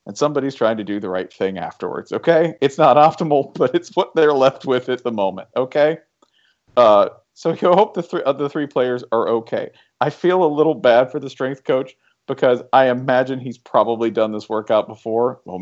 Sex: male